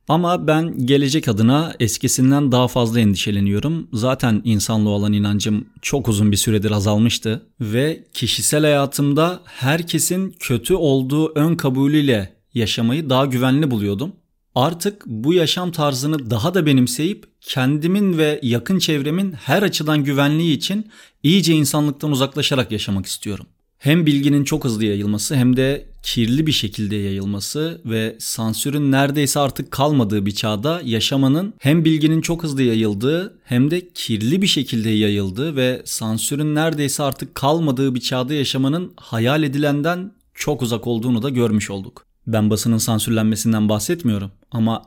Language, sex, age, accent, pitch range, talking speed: Turkish, male, 40-59, native, 115-155 Hz, 135 wpm